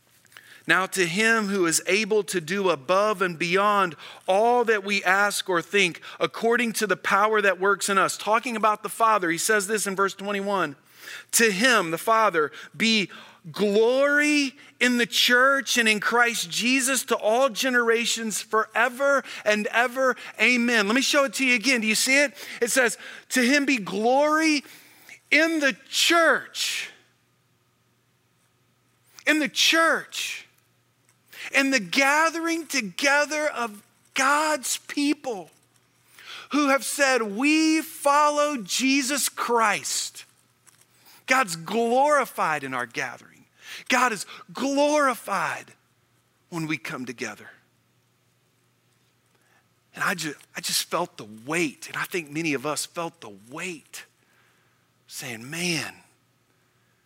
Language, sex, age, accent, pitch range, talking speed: English, male, 40-59, American, 185-275 Hz, 130 wpm